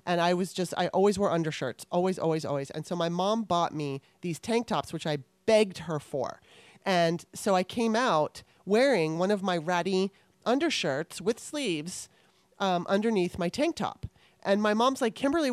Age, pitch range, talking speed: 30-49, 170-225 Hz, 185 wpm